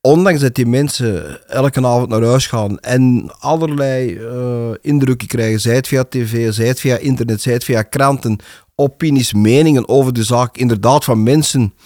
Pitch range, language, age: 120-160 Hz, Dutch, 40-59